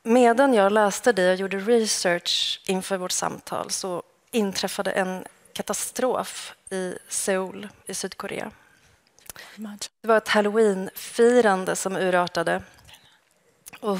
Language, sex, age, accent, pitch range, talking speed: English, female, 30-49, Swedish, 185-225 Hz, 105 wpm